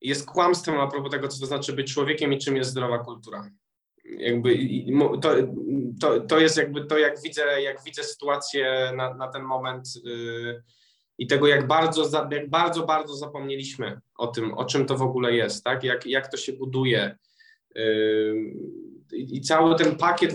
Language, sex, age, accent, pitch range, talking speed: Polish, male, 20-39, native, 125-150 Hz, 175 wpm